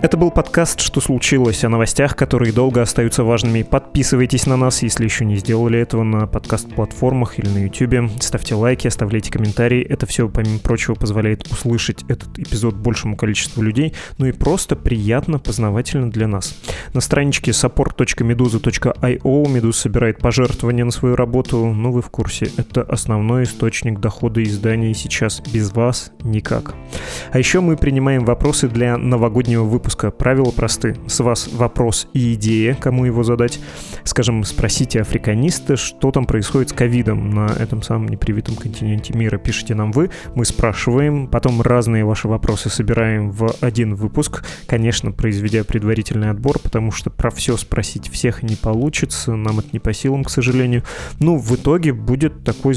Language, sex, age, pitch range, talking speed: Russian, male, 20-39, 110-130 Hz, 155 wpm